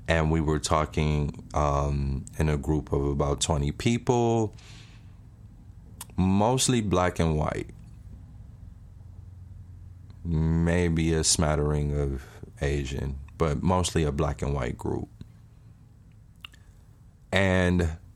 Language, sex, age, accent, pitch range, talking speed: English, male, 30-49, American, 75-95 Hz, 95 wpm